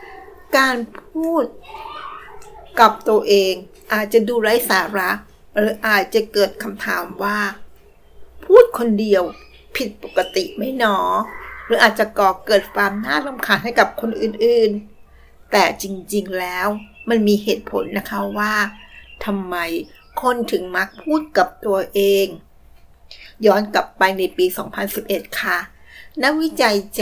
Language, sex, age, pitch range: Thai, female, 60-79, 195-245 Hz